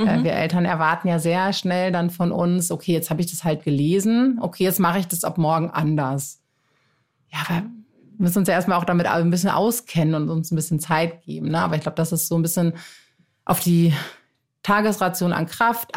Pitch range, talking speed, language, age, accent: 150-175 Hz, 205 wpm, German, 30-49, German